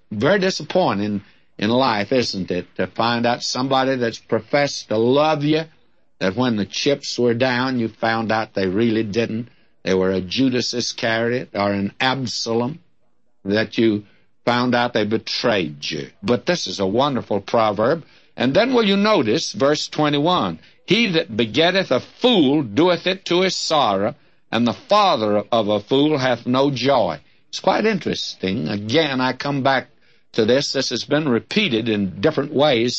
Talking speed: 165 wpm